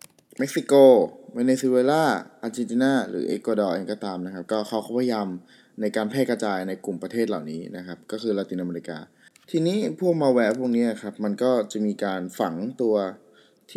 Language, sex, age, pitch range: Thai, male, 20-39, 100-120 Hz